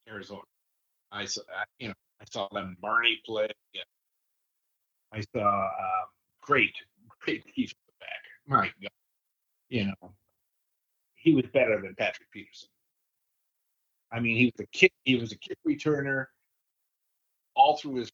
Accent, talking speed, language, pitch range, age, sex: American, 140 wpm, English, 115-140 Hz, 50-69, male